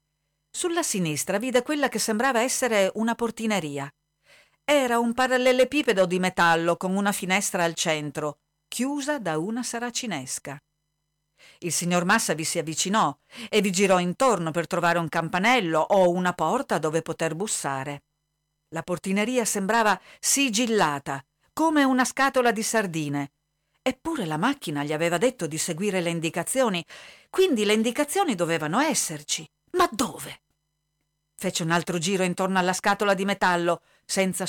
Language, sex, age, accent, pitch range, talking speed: Italian, female, 50-69, native, 155-230 Hz, 135 wpm